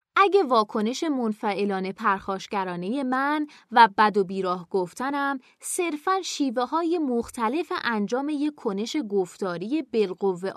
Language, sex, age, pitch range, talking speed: Persian, female, 20-39, 200-295 Hz, 110 wpm